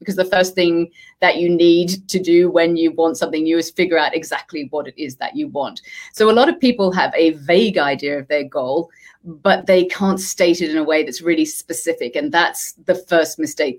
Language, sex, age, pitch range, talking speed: English, female, 30-49, 165-195 Hz, 225 wpm